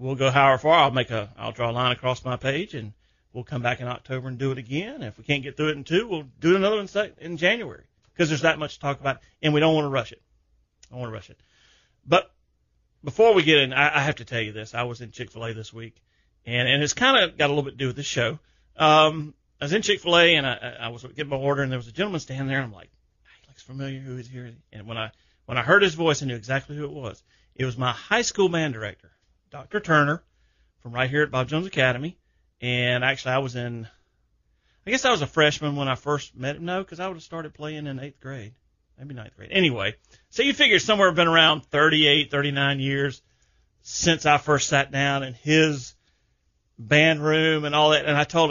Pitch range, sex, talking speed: 120-155 Hz, male, 250 wpm